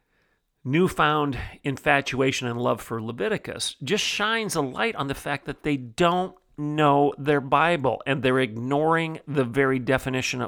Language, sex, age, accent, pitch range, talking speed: English, male, 40-59, American, 125-160 Hz, 145 wpm